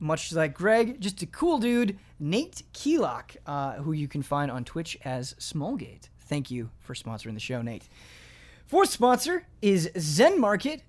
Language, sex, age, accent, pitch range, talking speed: English, male, 30-49, American, 140-200 Hz, 165 wpm